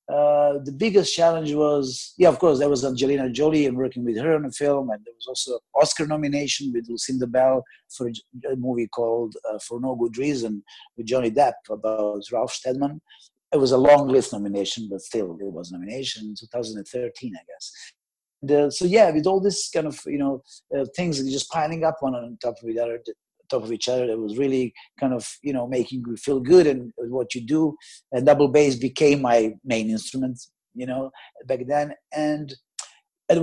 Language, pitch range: English, 120-145 Hz